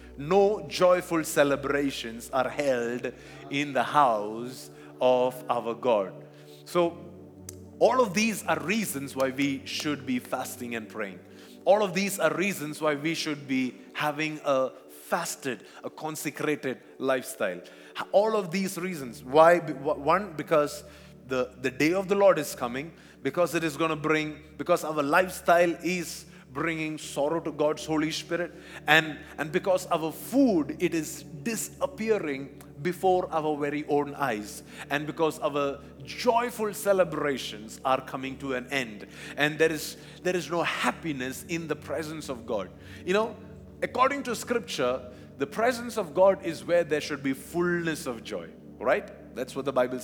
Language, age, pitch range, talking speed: English, 30-49, 135-175 Hz, 155 wpm